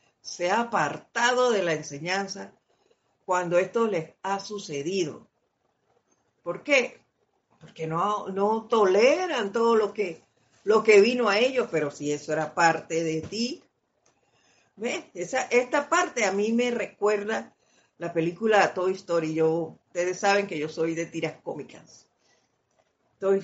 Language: Spanish